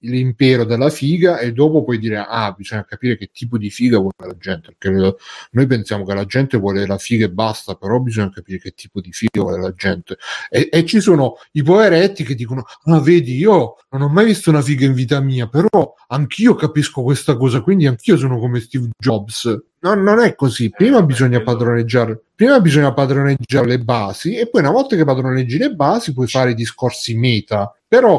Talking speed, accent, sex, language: 205 wpm, native, male, Italian